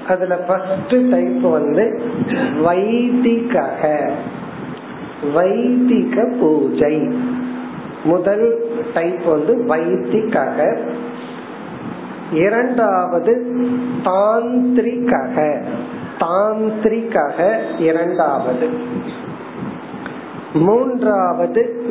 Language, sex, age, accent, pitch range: Tamil, male, 50-69, native, 175-240 Hz